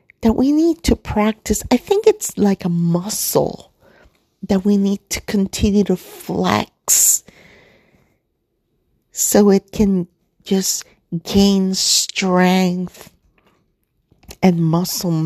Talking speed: 100 wpm